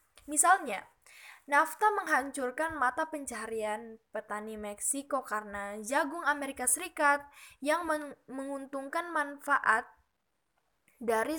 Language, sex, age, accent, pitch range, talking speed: Indonesian, female, 10-29, native, 220-285 Hz, 85 wpm